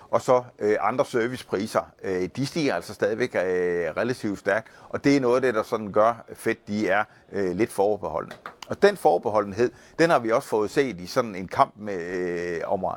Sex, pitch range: male, 95-140 Hz